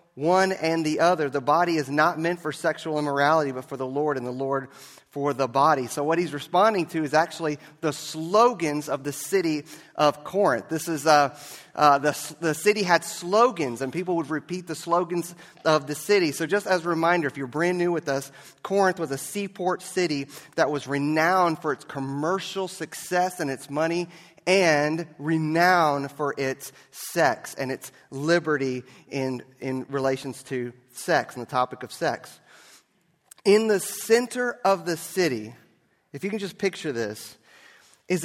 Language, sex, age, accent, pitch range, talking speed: English, male, 30-49, American, 140-175 Hz, 175 wpm